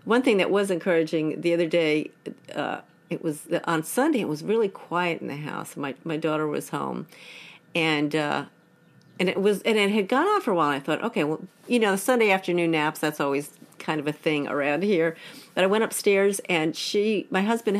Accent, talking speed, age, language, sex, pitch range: American, 210 wpm, 50-69, English, female, 160-205 Hz